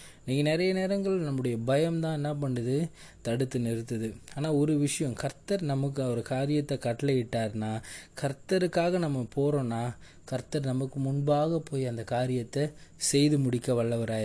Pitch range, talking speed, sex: 130-170 Hz, 130 wpm, male